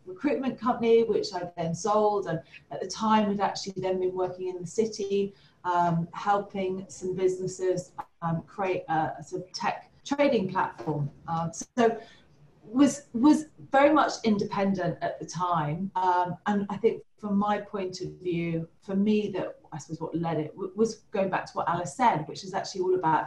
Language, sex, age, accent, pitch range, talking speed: English, female, 30-49, British, 165-205 Hz, 185 wpm